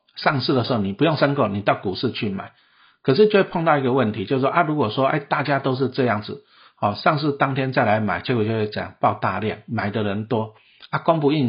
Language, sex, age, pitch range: Chinese, male, 50-69, 110-140 Hz